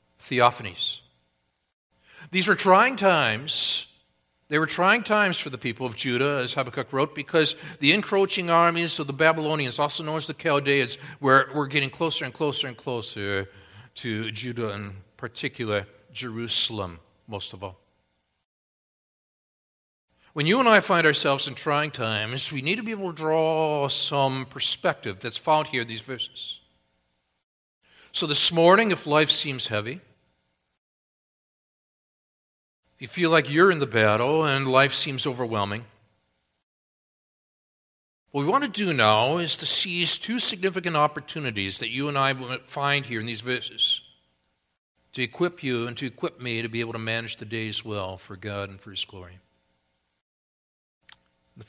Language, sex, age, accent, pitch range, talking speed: English, male, 50-69, American, 100-155 Hz, 155 wpm